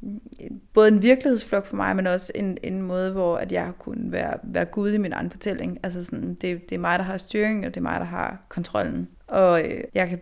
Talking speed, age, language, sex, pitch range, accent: 240 wpm, 20-39, Danish, female, 180-215 Hz, native